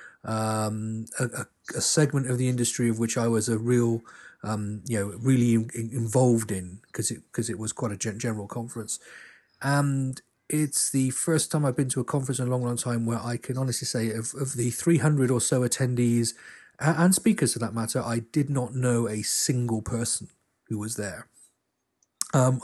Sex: male